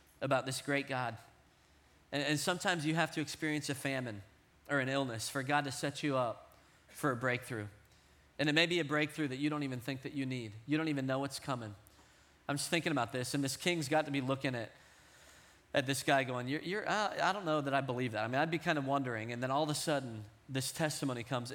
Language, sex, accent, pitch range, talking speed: English, male, American, 115-145 Hz, 245 wpm